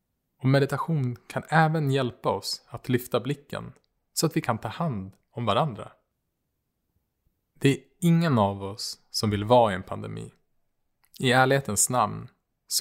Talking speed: 150 wpm